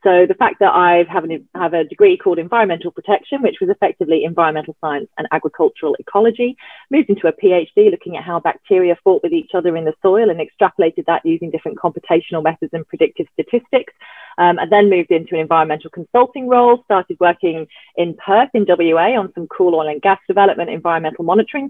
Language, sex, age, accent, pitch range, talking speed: English, female, 30-49, British, 160-225 Hz, 195 wpm